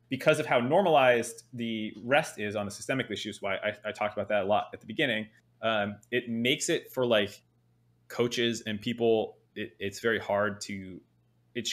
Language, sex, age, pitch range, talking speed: English, male, 20-39, 100-120 Hz, 185 wpm